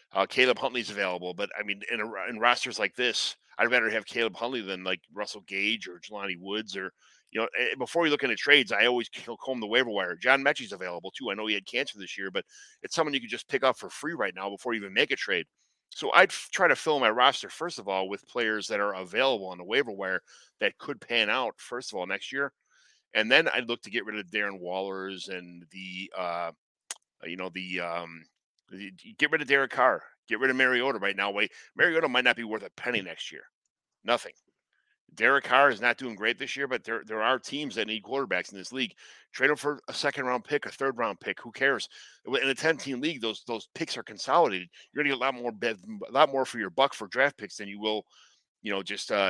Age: 30-49